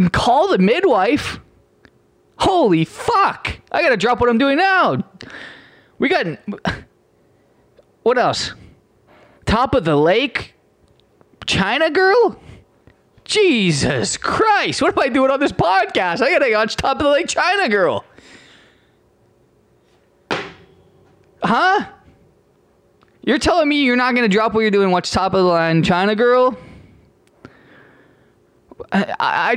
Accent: American